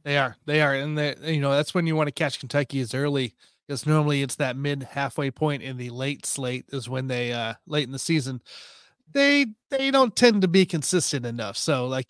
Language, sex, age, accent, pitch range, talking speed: English, male, 30-49, American, 135-165 Hz, 230 wpm